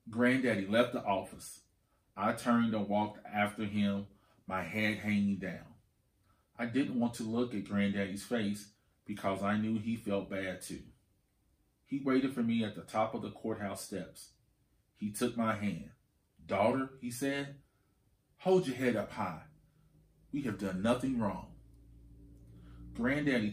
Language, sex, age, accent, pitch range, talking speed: English, male, 30-49, American, 100-120 Hz, 150 wpm